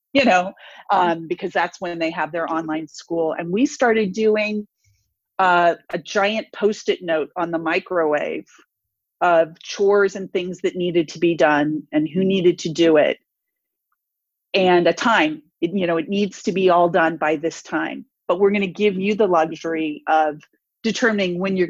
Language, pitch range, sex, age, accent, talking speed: English, 165-210 Hz, female, 40-59, American, 175 wpm